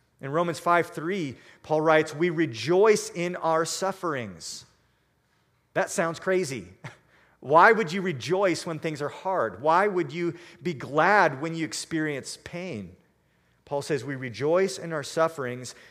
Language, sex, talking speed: English, male, 140 wpm